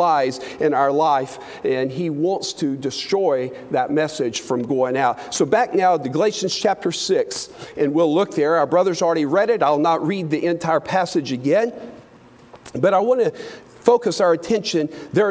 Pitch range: 180-240 Hz